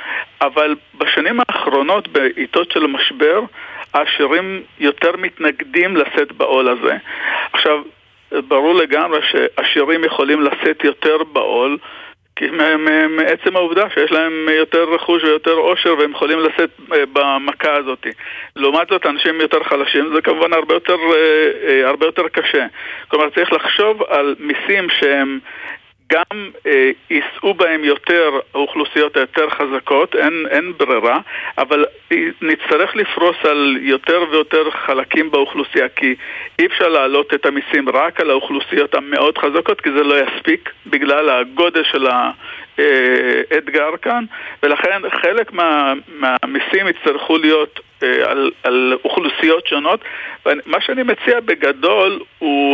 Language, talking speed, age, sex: Hebrew, 120 wpm, 50-69, male